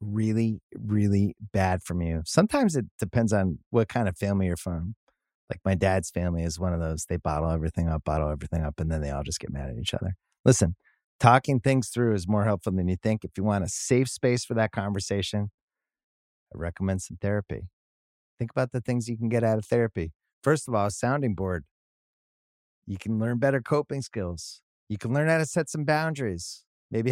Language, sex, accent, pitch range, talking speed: English, male, American, 90-120 Hz, 210 wpm